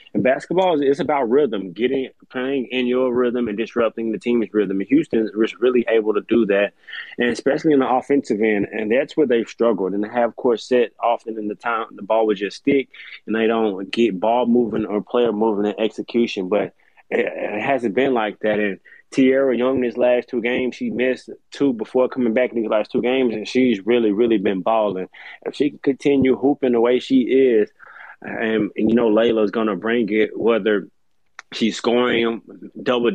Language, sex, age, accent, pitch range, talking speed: English, male, 20-39, American, 110-125 Hz, 200 wpm